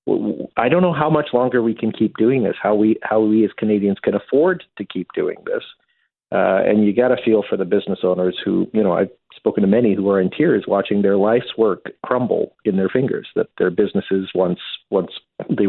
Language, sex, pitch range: English, male, 100-130 Hz